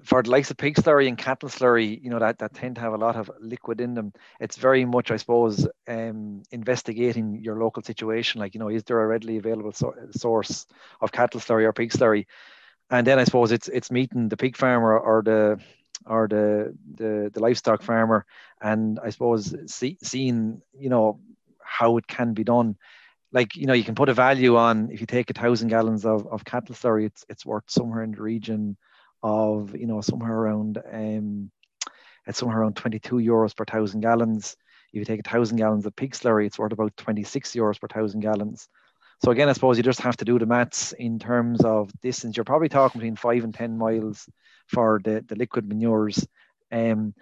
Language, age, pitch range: English, 30-49, 110-120 Hz